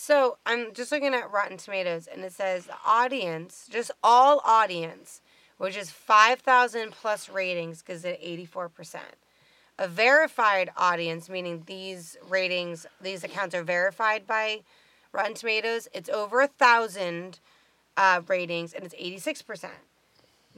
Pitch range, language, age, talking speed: 185-250 Hz, English, 30-49, 130 wpm